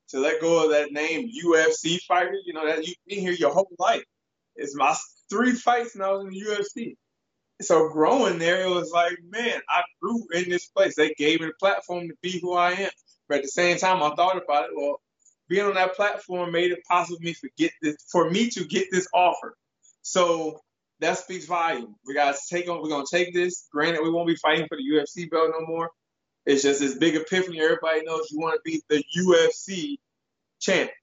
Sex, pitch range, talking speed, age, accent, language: male, 160-190 Hz, 220 wpm, 20-39, American, English